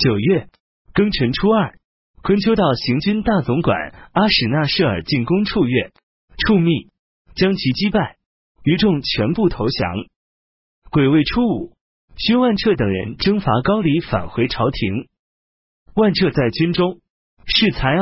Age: 30-49